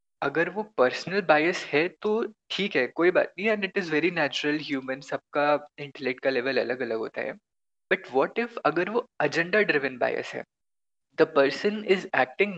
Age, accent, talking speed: 20-39, native, 180 wpm